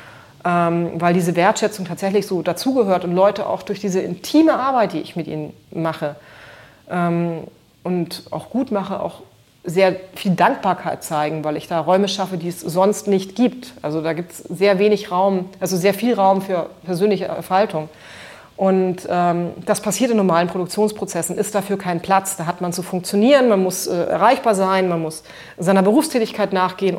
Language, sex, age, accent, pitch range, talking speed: English, female, 30-49, German, 170-205 Hz, 175 wpm